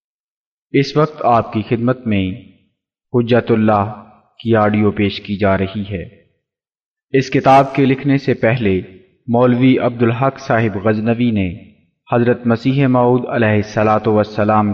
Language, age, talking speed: English, 30-49, 130 wpm